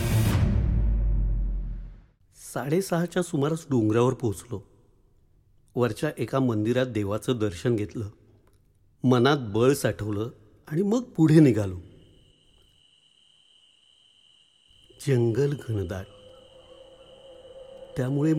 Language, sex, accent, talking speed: English, male, Indian, 70 wpm